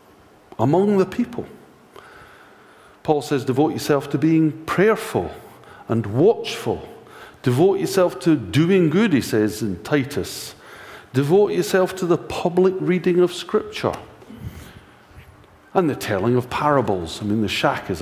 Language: English